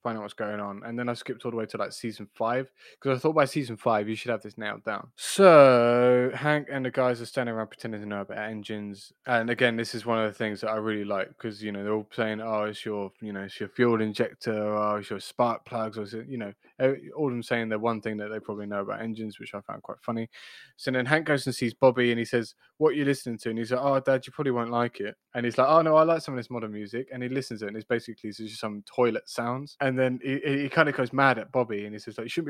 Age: 20-39